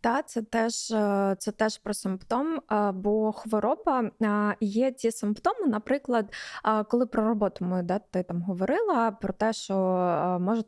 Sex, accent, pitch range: female, native, 185-225 Hz